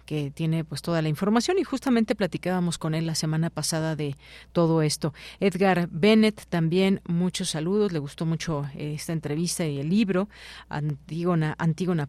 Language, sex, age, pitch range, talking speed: Spanish, female, 40-59, 160-190 Hz, 160 wpm